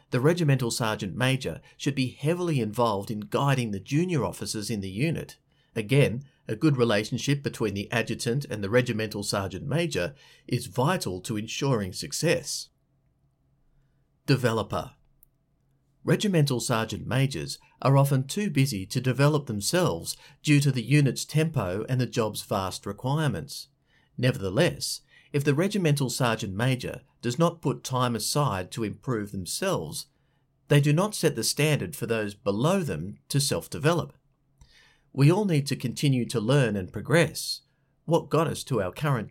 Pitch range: 120-150 Hz